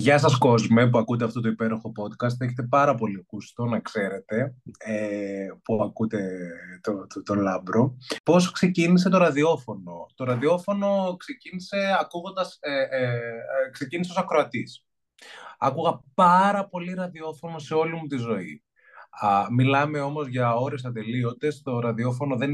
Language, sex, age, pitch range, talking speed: Greek, male, 20-39, 110-145 Hz, 140 wpm